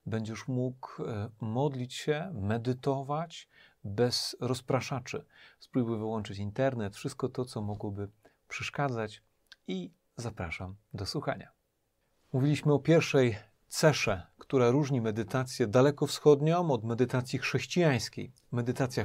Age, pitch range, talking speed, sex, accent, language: 40-59, 110-140 Hz, 100 wpm, male, native, Polish